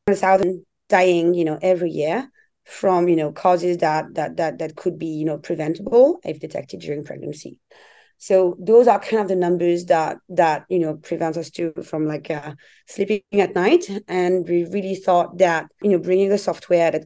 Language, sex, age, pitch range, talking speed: English, female, 30-49, 160-185 Hz, 190 wpm